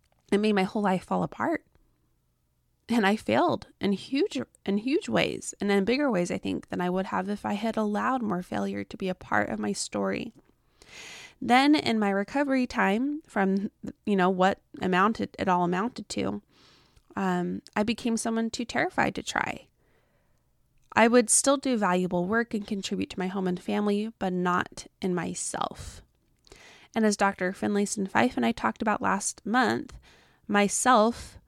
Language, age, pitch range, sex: English, 20-39, 185-225 Hz, female